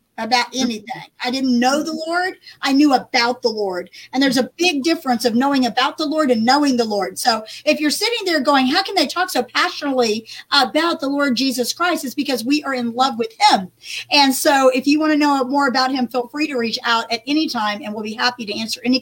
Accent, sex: American, female